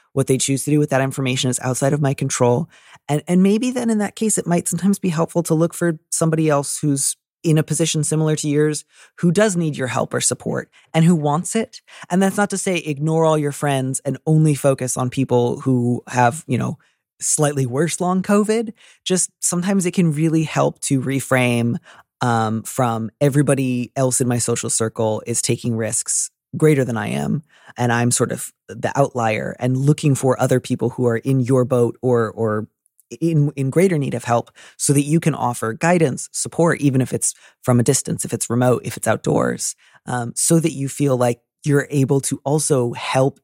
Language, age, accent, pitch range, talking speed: English, 30-49, American, 125-160 Hz, 205 wpm